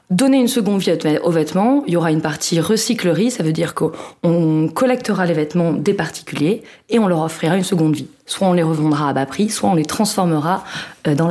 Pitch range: 160-215 Hz